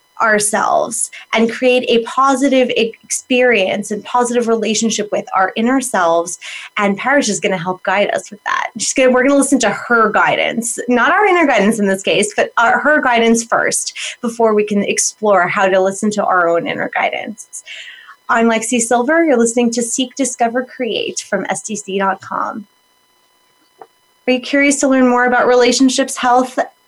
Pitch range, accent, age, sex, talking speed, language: 205-250 Hz, American, 20-39, female, 165 wpm, English